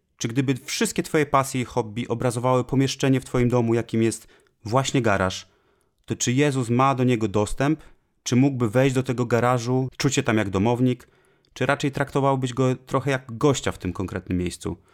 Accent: native